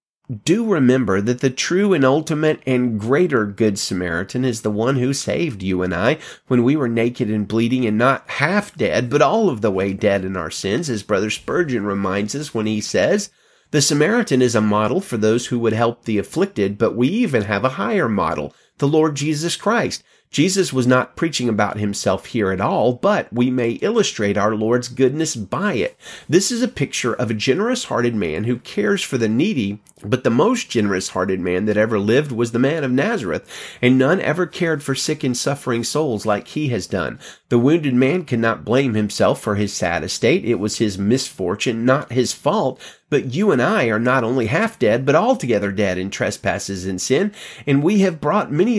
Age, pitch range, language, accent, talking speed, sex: 30-49, 105-150 Hz, English, American, 200 wpm, male